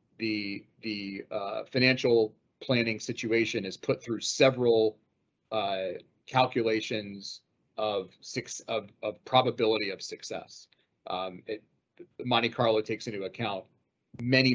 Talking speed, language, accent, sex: 110 wpm, English, American, male